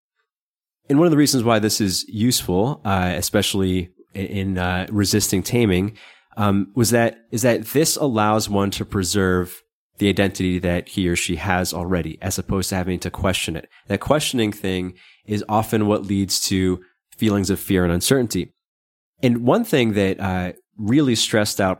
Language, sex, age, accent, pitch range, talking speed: English, male, 20-39, American, 90-110 Hz, 170 wpm